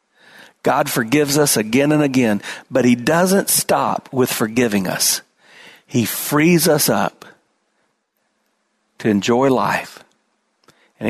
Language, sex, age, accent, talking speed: English, male, 50-69, American, 115 wpm